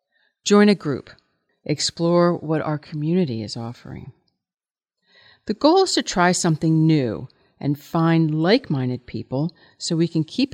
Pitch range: 145-185 Hz